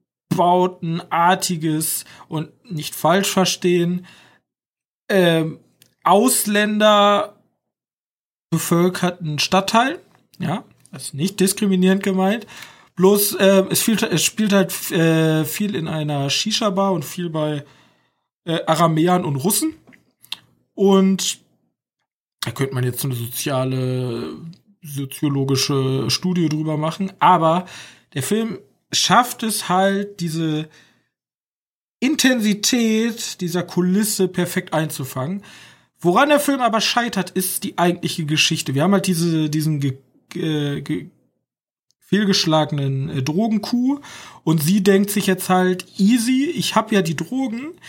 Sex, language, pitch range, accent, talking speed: male, German, 155-205 Hz, German, 110 wpm